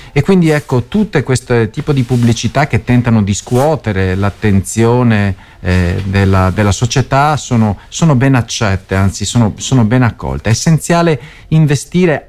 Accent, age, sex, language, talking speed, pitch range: native, 40-59, male, Italian, 135 wpm, 100-140 Hz